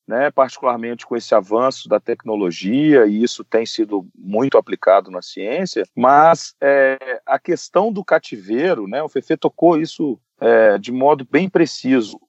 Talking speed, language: 150 wpm, Portuguese